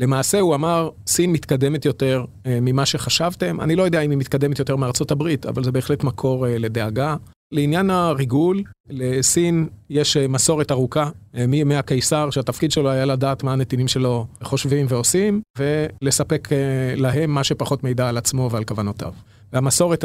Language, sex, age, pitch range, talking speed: Hebrew, male, 30-49, 125-150 Hz, 160 wpm